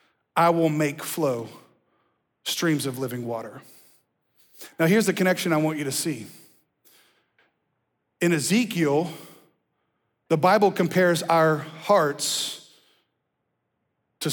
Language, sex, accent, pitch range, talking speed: English, male, American, 150-190 Hz, 105 wpm